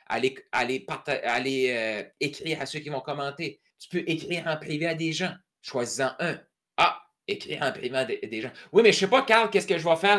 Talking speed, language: 225 wpm, French